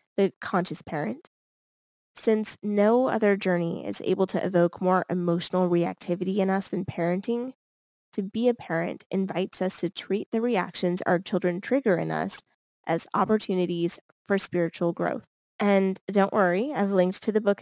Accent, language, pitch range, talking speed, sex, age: American, English, 180-215 Hz, 155 wpm, female, 20-39